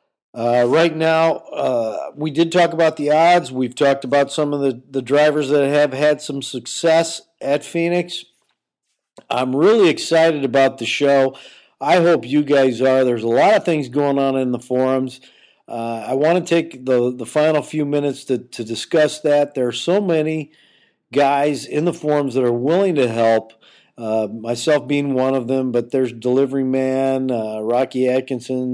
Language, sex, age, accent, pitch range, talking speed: English, male, 50-69, American, 130-150 Hz, 180 wpm